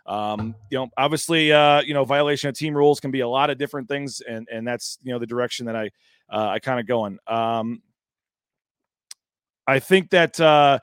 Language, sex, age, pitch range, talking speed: English, male, 30-49, 135-165 Hz, 210 wpm